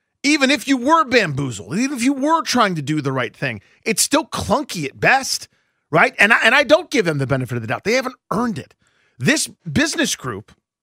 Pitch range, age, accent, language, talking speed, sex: 220-305 Hz, 40-59, American, English, 220 wpm, male